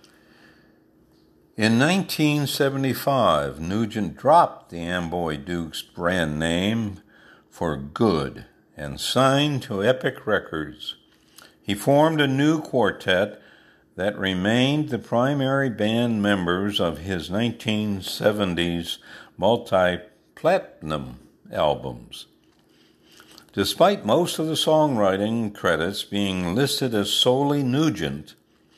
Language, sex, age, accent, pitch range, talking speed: English, male, 60-79, American, 95-140 Hz, 90 wpm